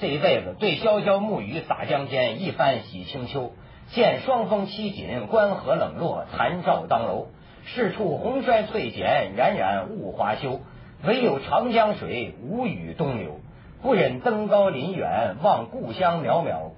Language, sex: Chinese, male